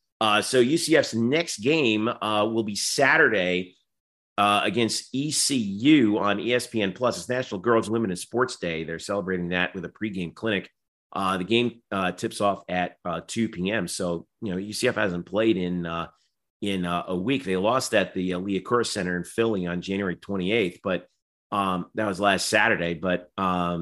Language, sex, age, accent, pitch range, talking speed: English, male, 40-59, American, 90-115 Hz, 180 wpm